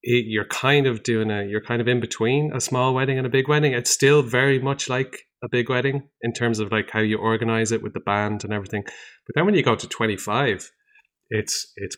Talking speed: 235 wpm